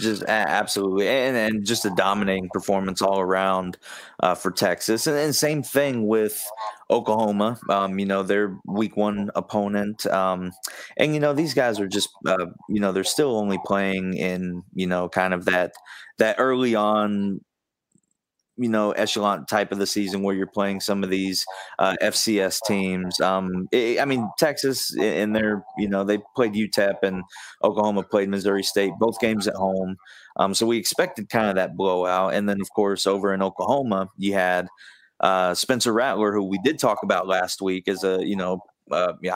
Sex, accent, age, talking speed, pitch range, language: male, American, 20-39, 180 wpm, 95-110 Hz, English